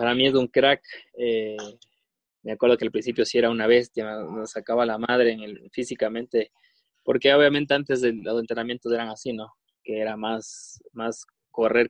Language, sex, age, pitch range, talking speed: Spanish, male, 20-39, 110-135 Hz, 180 wpm